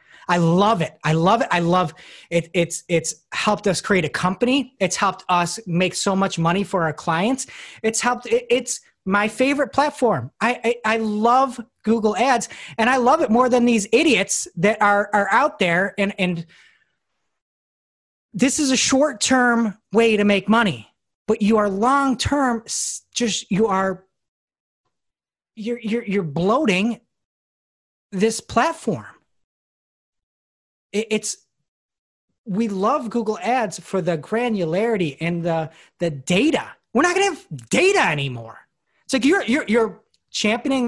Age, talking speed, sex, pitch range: 30-49, 150 wpm, male, 170-230 Hz